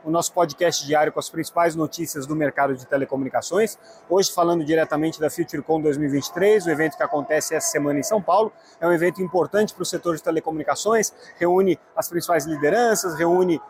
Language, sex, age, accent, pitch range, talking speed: Portuguese, male, 30-49, Brazilian, 160-200 Hz, 180 wpm